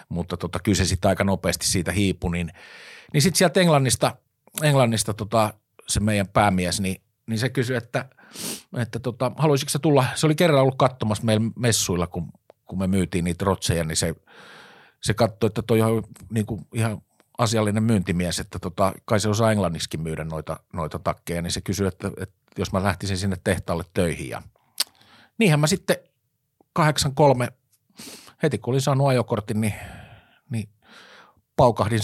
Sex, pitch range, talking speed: male, 95-120 Hz, 160 wpm